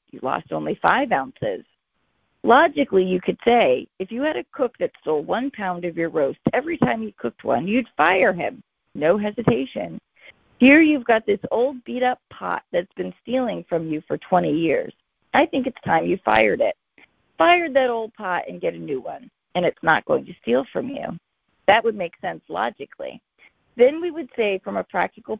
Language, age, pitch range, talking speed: English, 40-59, 175-260 Hz, 195 wpm